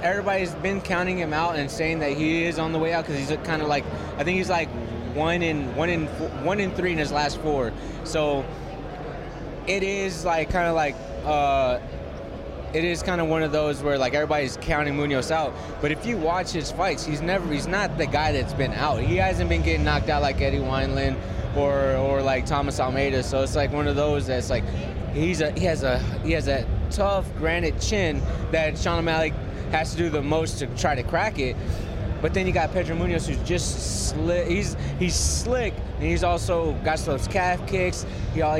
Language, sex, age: English, male, 20-39